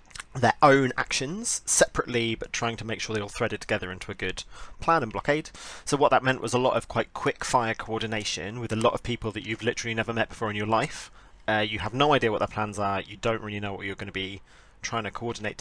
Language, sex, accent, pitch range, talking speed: English, male, British, 105-120 Hz, 255 wpm